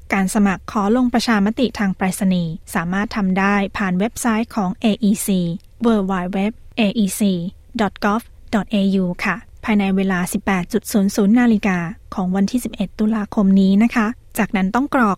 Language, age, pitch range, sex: Thai, 20-39, 195-230 Hz, female